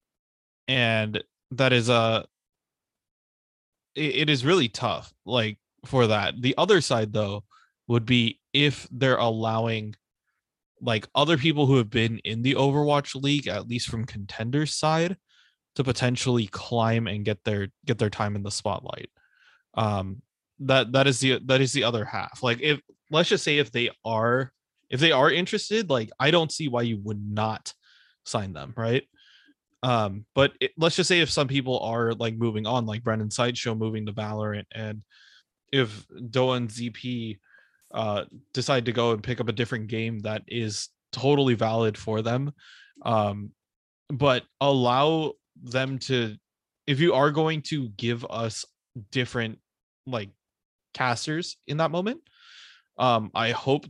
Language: English